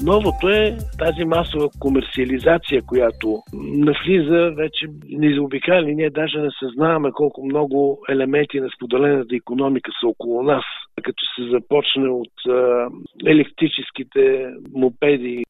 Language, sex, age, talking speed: Bulgarian, male, 50-69, 110 wpm